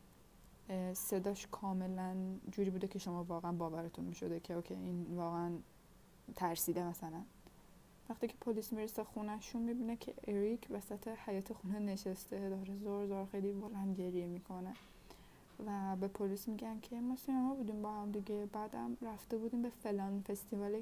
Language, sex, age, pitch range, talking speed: Persian, female, 20-39, 175-215 Hz, 145 wpm